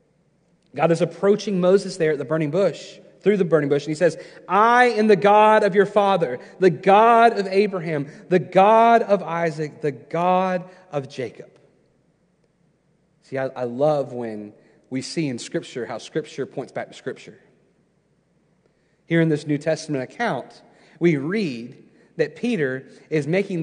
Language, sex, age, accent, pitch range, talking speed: English, male, 30-49, American, 140-190 Hz, 155 wpm